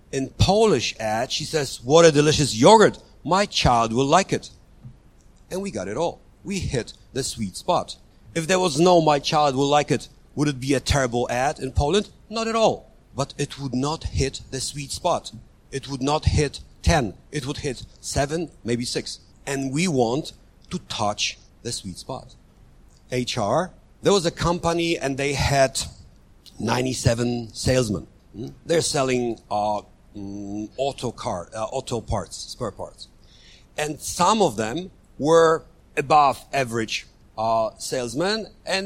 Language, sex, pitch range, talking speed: Croatian, male, 115-155 Hz, 155 wpm